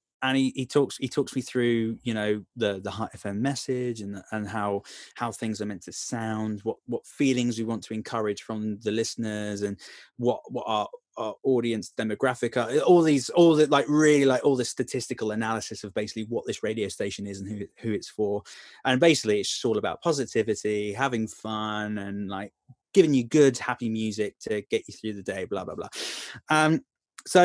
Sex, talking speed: male, 205 wpm